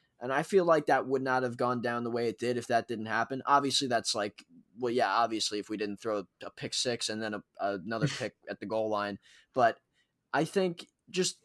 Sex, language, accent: male, English, American